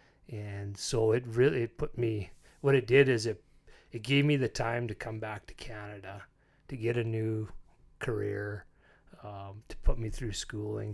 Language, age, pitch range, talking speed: English, 30-49, 105-125 Hz, 175 wpm